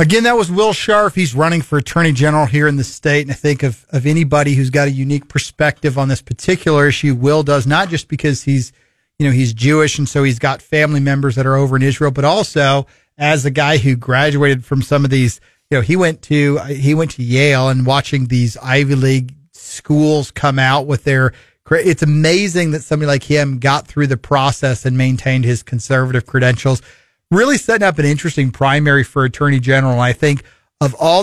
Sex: male